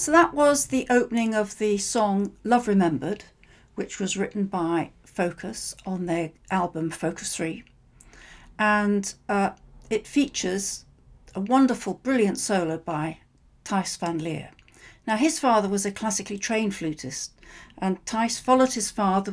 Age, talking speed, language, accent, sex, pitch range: 60-79, 140 wpm, English, British, female, 185-225 Hz